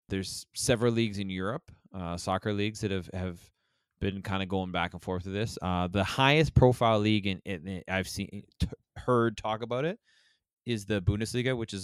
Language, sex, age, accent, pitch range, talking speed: English, male, 20-39, American, 95-115 Hz, 210 wpm